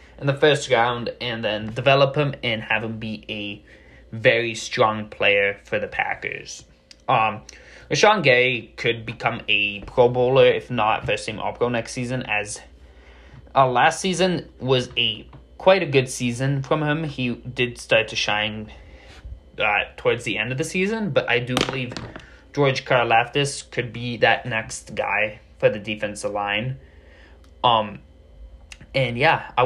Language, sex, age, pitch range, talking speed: English, male, 20-39, 105-140 Hz, 160 wpm